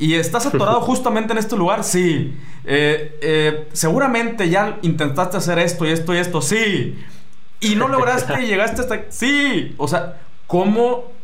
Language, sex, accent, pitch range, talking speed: Spanish, male, Mexican, 130-170 Hz, 165 wpm